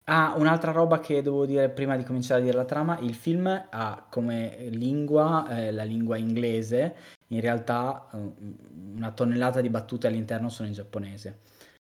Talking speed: 160 wpm